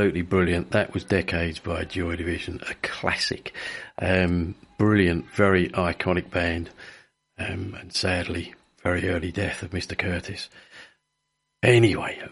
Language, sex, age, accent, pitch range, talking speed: English, male, 50-69, British, 95-120 Hz, 115 wpm